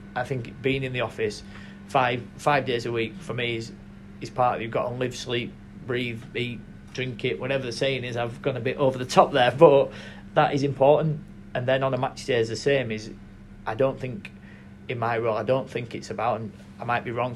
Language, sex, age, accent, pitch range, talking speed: English, male, 30-49, British, 105-130 Hz, 240 wpm